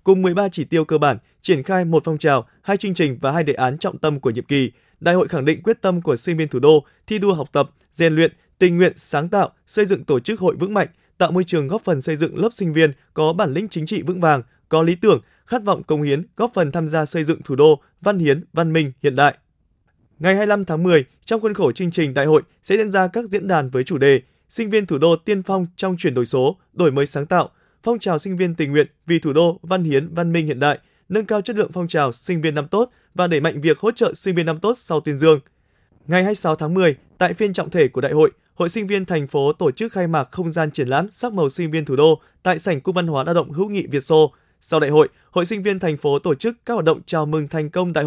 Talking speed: 275 wpm